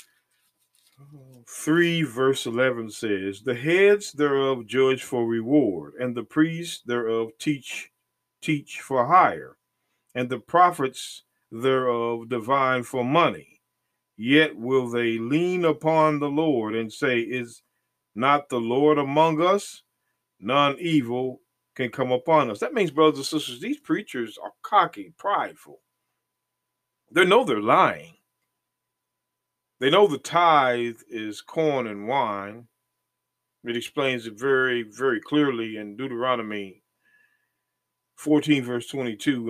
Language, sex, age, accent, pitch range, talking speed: English, male, 50-69, American, 120-150 Hz, 120 wpm